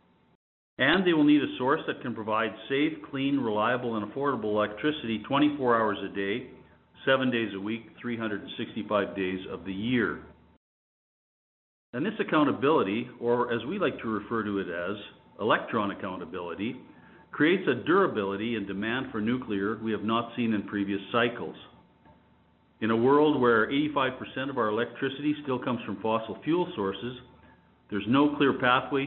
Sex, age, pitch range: male, 50-69, 100-130 Hz